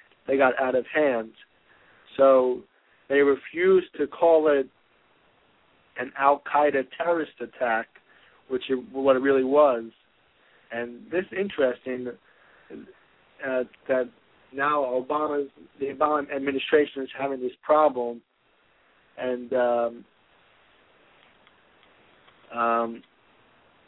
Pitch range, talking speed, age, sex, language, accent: 130-150 Hz, 95 wpm, 50-69, male, English, American